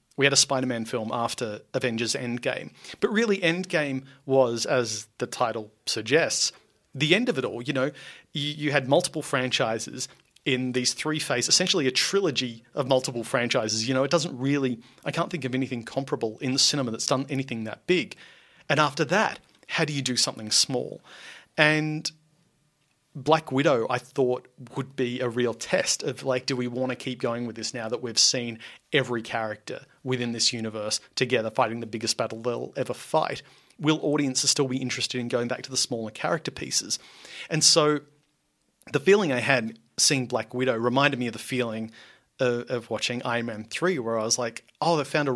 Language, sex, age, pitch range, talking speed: English, male, 30-49, 115-145 Hz, 190 wpm